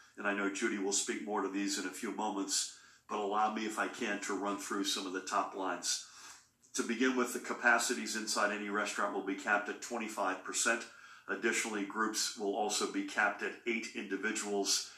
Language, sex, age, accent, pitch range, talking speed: English, male, 50-69, American, 100-115 Hz, 195 wpm